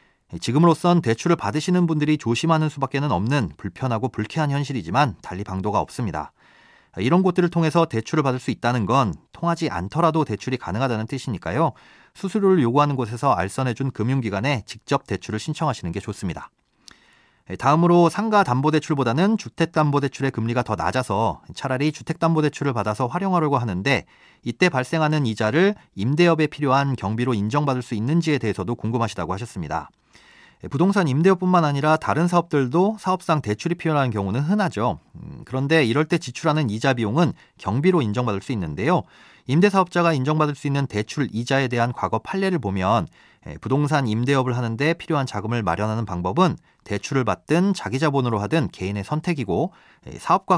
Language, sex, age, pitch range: Korean, male, 40-59, 115-160 Hz